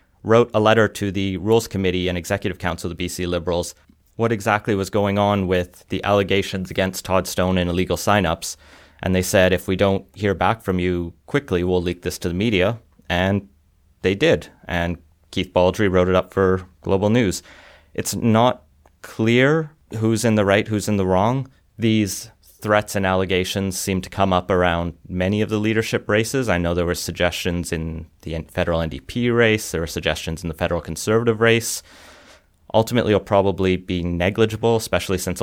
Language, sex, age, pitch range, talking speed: English, male, 30-49, 90-105 Hz, 180 wpm